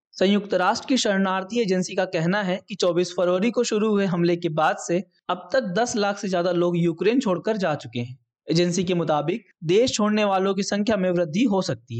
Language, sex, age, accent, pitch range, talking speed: Hindi, male, 20-39, native, 170-210 Hz, 210 wpm